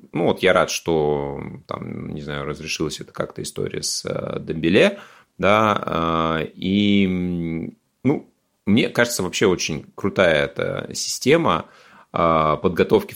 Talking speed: 115 wpm